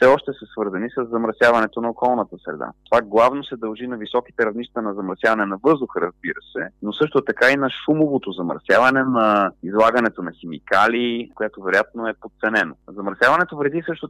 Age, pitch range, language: 30-49, 105-130 Hz, Bulgarian